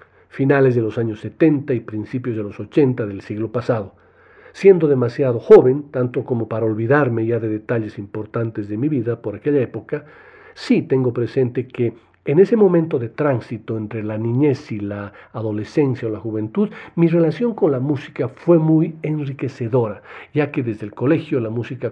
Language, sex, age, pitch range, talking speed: Spanish, male, 50-69, 110-140 Hz, 170 wpm